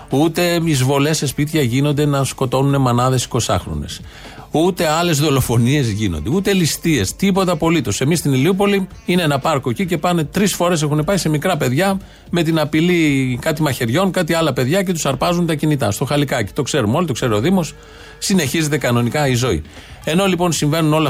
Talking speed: 175 wpm